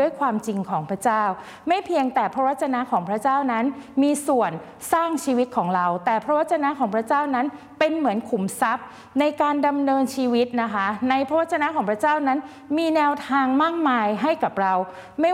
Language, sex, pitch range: Thai, female, 215-290 Hz